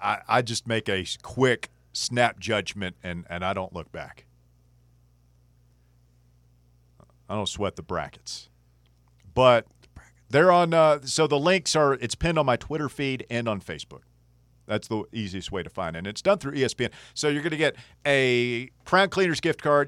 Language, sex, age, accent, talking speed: English, male, 40-59, American, 180 wpm